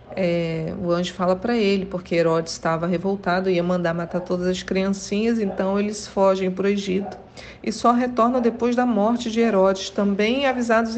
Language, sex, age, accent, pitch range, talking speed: Portuguese, female, 40-59, Brazilian, 180-220 Hz, 170 wpm